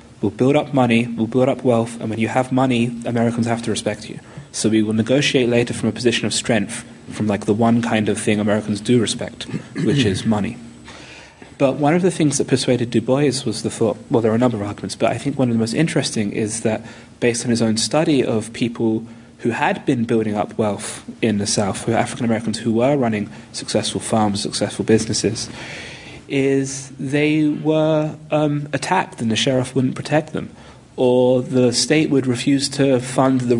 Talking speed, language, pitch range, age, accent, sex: 205 wpm, English, 110-130 Hz, 30-49, British, male